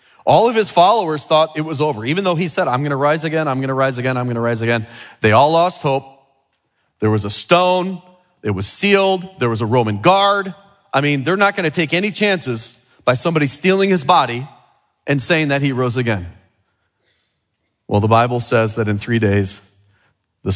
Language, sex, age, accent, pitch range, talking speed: English, male, 30-49, American, 100-150 Hz, 210 wpm